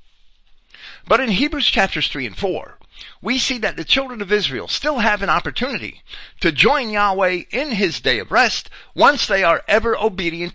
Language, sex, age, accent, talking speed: English, male, 50-69, American, 175 wpm